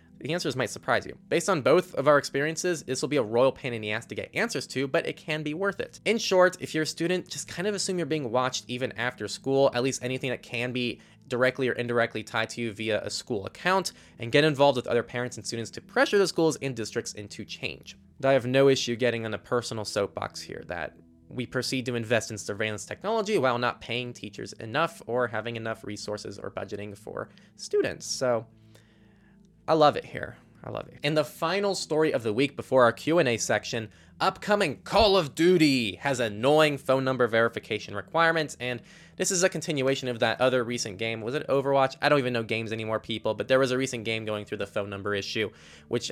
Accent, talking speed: American, 225 wpm